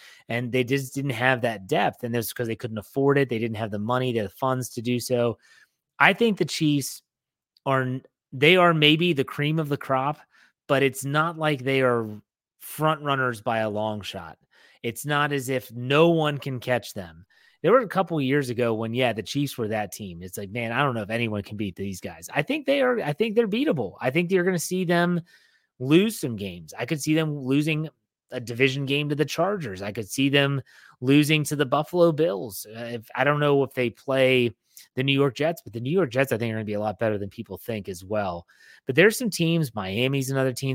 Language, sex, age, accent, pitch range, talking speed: English, male, 30-49, American, 115-145 Hz, 235 wpm